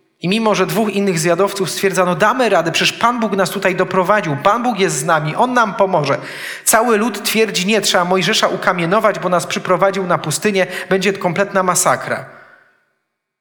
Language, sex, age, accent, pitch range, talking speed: Polish, male, 40-59, native, 150-205 Hz, 170 wpm